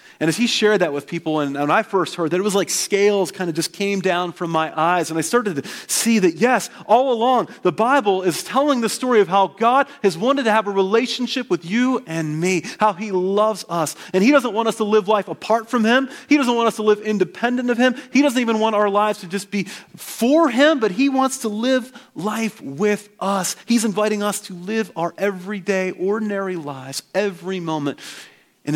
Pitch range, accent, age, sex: 165-220 Hz, American, 30-49, male